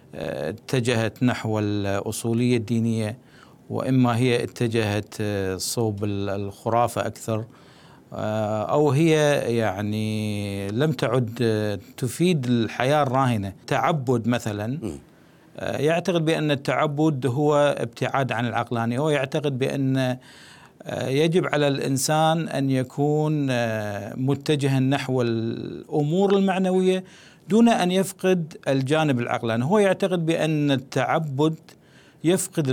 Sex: male